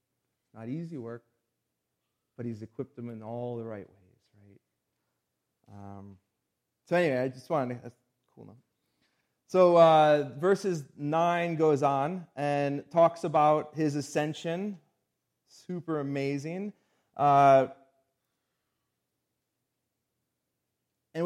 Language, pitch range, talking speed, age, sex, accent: English, 135-175 Hz, 105 wpm, 30-49, male, American